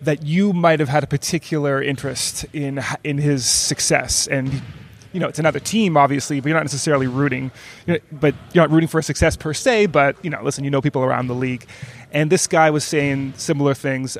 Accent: American